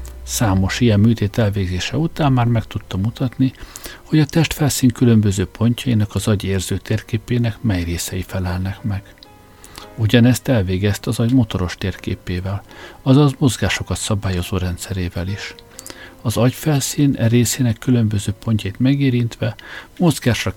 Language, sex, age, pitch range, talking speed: Hungarian, male, 60-79, 95-120 Hz, 115 wpm